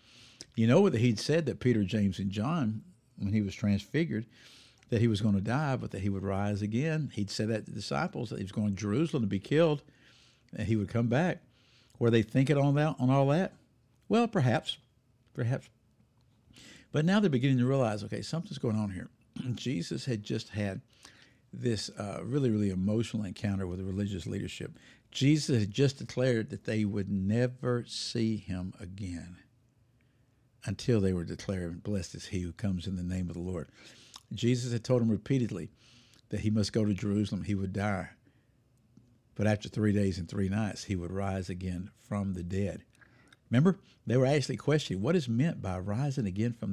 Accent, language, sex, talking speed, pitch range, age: American, English, male, 190 wpm, 105-125 Hz, 60-79